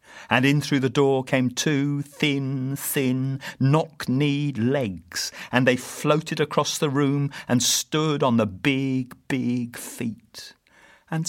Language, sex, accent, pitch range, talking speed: English, male, British, 120-155 Hz, 135 wpm